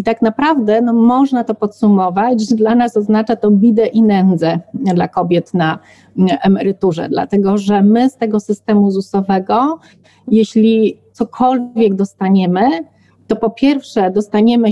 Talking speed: 135 wpm